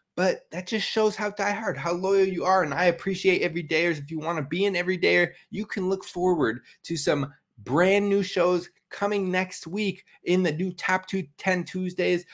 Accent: American